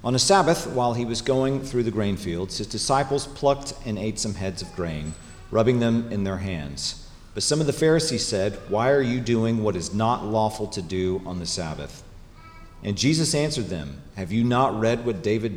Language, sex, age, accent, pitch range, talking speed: English, male, 40-59, American, 95-120 Hz, 210 wpm